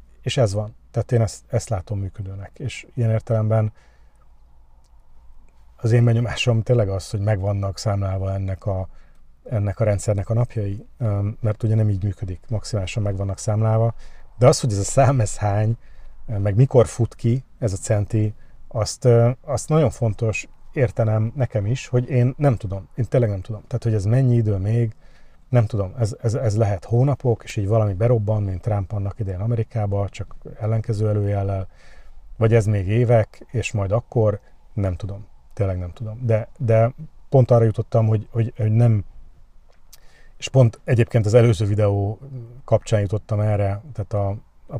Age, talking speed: 30-49, 165 wpm